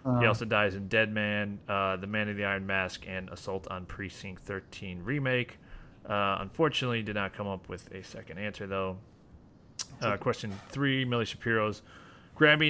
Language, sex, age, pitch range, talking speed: English, male, 30-49, 95-120 Hz, 170 wpm